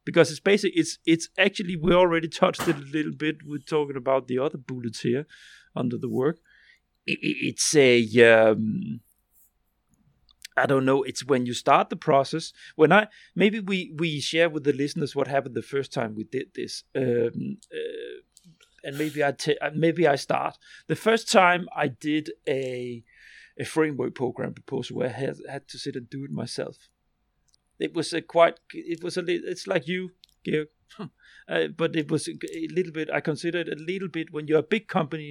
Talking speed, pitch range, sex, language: 190 wpm, 135-175 Hz, male, English